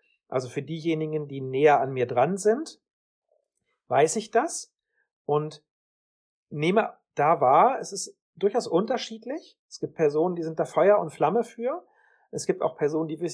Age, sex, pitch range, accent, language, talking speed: 40-59, male, 150-205 Hz, German, German, 160 wpm